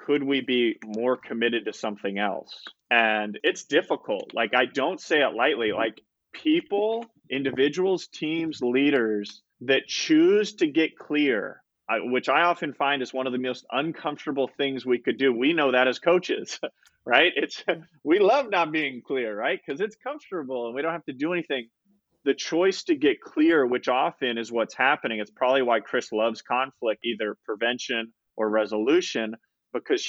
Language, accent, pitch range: English, American, 115-155 Hz